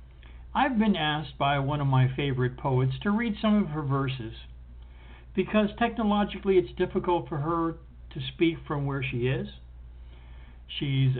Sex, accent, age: male, American, 60-79